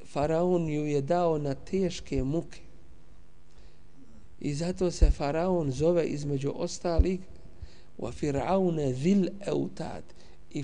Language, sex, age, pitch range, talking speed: English, male, 50-69, 130-170 Hz, 85 wpm